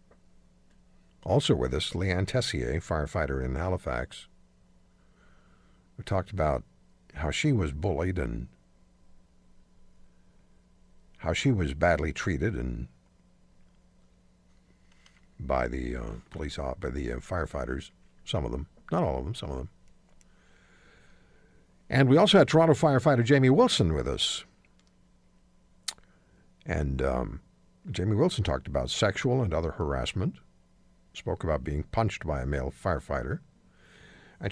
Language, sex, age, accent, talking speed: English, male, 60-79, American, 120 wpm